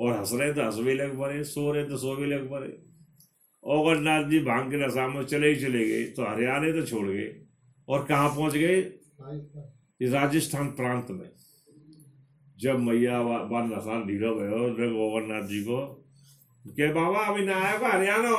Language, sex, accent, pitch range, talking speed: Hindi, male, native, 120-160 Hz, 165 wpm